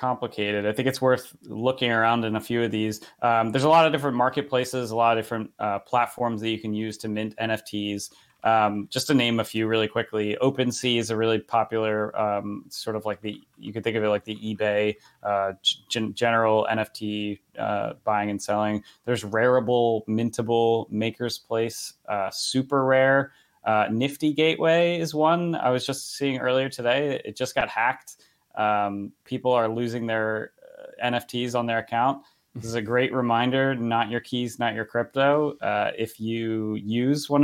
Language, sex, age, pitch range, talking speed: English, male, 20-39, 110-130 Hz, 185 wpm